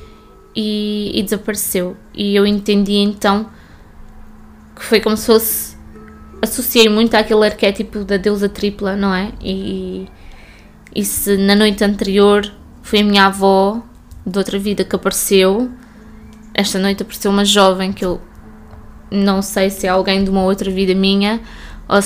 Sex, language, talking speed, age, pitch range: female, Portuguese, 145 wpm, 20-39, 190-215 Hz